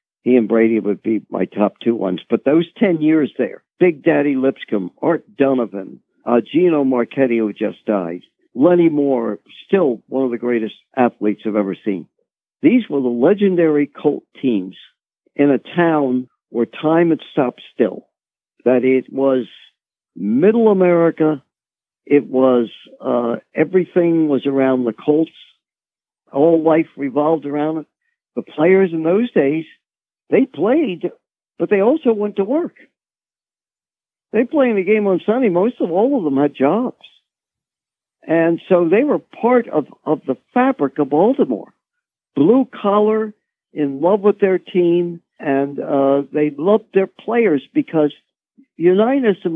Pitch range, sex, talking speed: 135-210 Hz, male, 150 wpm